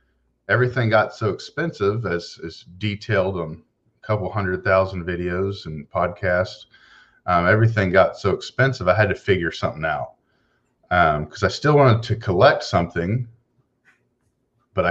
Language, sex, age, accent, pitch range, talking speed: English, male, 40-59, American, 90-120 Hz, 140 wpm